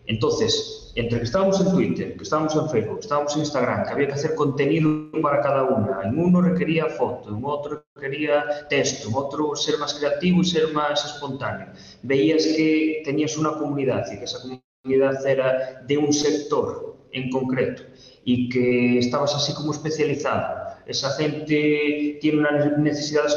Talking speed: 165 wpm